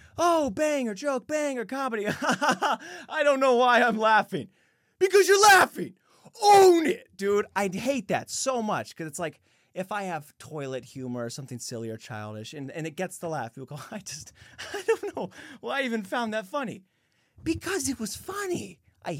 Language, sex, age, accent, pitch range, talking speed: English, male, 30-49, American, 115-195 Hz, 185 wpm